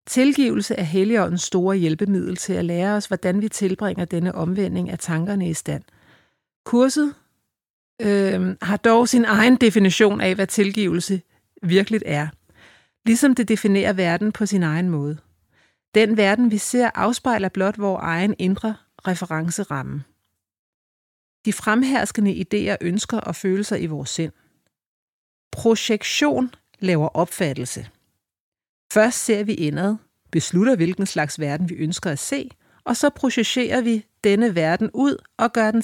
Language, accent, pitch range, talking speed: Danish, native, 170-220 Hz, 135 wpm